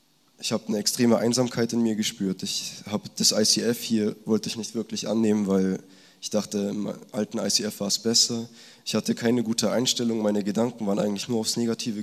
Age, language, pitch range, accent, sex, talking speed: 20-39, German, 100-115 Hz, German, male, 195 wpm